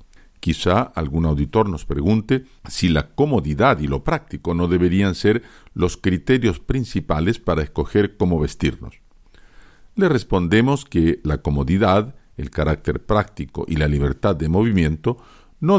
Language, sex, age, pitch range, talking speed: Spanish, male, 50-69, 80-110 Hz, 135 wpm